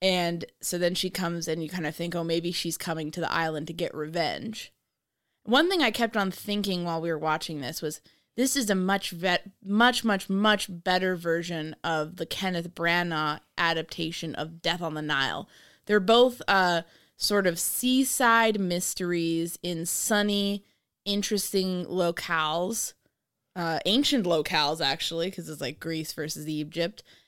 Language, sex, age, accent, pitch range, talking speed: English, female, 20-39, American, 160-195 Hz, 160 wpm